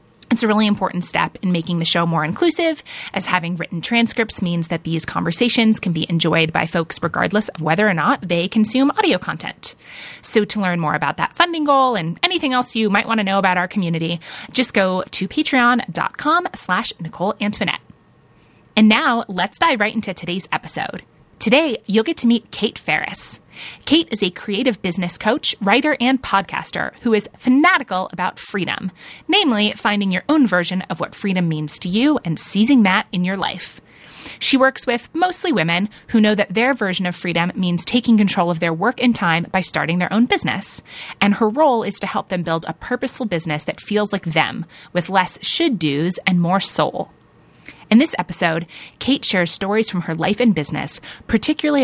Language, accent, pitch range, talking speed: English, American, 175-240 Hz, 190 wpm